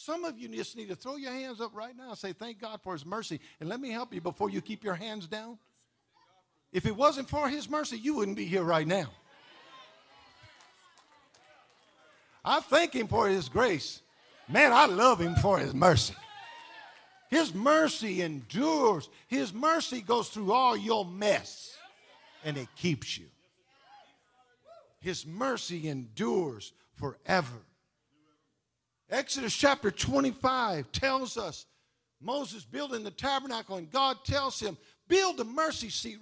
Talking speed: 150 wpm